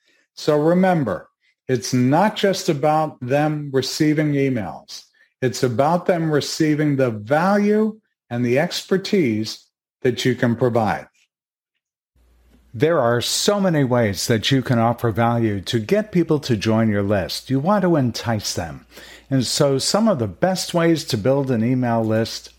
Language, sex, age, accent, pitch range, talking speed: English, male, 50-69, American, 115-155 Hz, 150 wpm